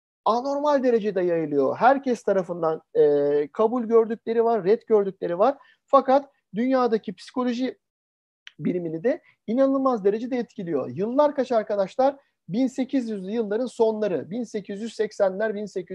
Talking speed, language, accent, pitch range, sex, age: 100 wpm, Turkish, native, 195-270 Hz, male, 50-69